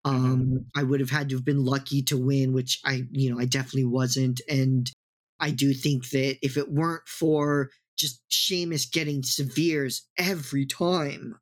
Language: English